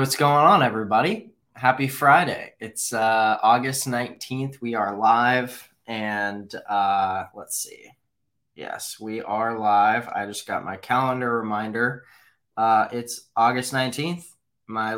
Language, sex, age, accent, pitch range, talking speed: English, male, 20-39, American, 105-125 Hz, 130 wpm